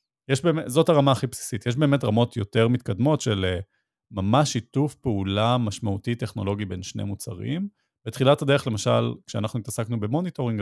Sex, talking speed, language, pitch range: male, 155 wpm, Hebrew, 105-130 Hz